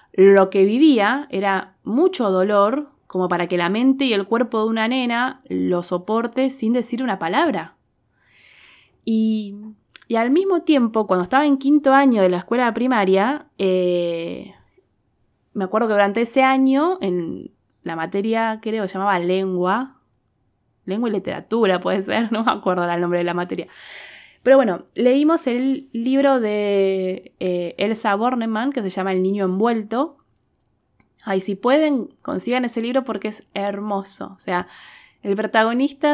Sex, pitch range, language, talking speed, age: female, 185-250 Hz, Spanish, 155 wpm, 20-39